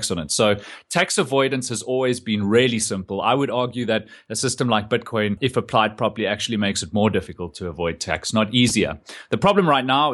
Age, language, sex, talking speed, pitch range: 30-49, English, male, 205 wpm, 100-130 Hz